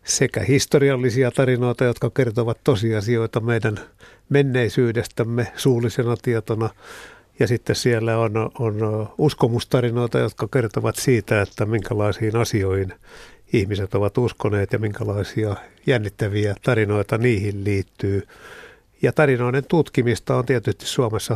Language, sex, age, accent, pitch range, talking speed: Finnish, male, 60-79, native, 110-125 Hz, 105 wpm